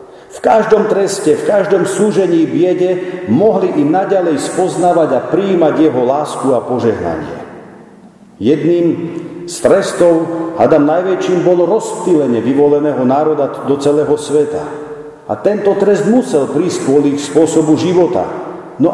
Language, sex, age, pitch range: Slovak, male, 50-69, 135-175 Hz